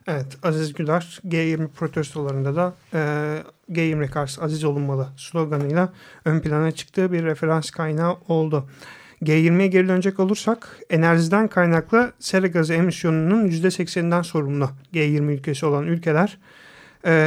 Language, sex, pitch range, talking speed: Turkish, male, 155-180 Hz, 120 wpm